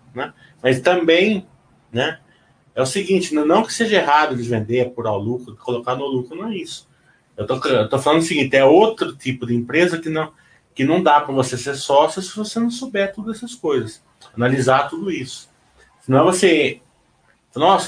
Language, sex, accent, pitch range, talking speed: Portuguese, male, Brazilian, 120-160 Hz, 200 wpm